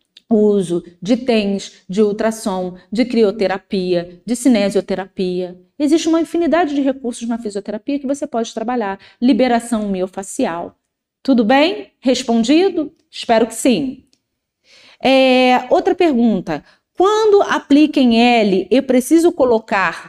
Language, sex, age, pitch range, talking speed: Portuguese, female, 30-49, 205-305 Hz, 115 wpm